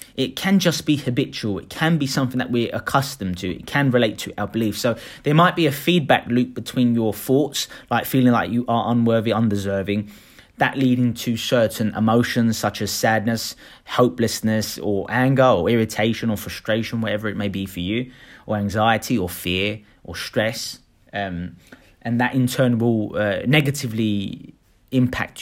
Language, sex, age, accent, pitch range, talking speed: English, male, 30-49, British, 105-135 Hz, 170 wpm